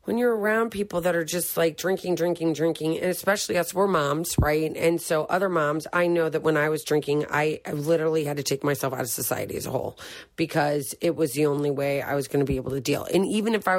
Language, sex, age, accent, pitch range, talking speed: English, female, 30-49, American, 150-180 Hz, 255 wpm